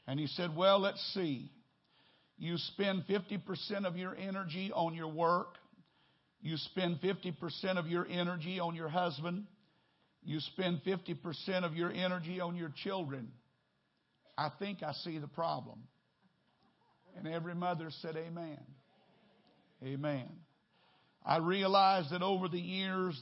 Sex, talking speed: male, 130 wpm